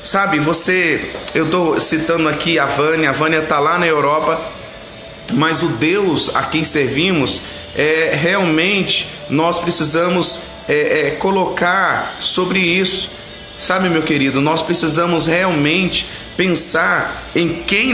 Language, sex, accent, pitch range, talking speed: Portuguese, male, Brazilian, 150-175 Hz, 125 wpm